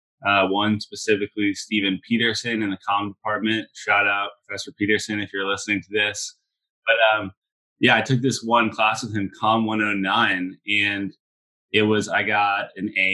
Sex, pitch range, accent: male, 95-105 Hz, American